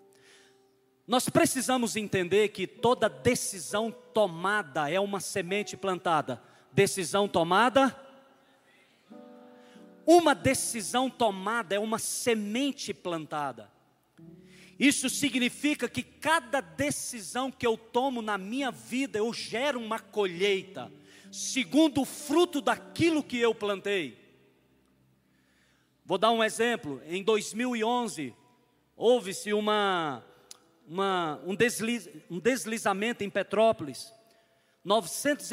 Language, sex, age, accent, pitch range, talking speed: Portuguese, male, 40-59, Brazilian, 195-245 Hz, 100 wpm